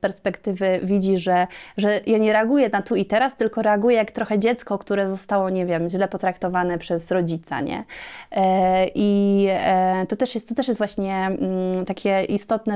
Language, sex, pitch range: Polish, female, 185-210 Hz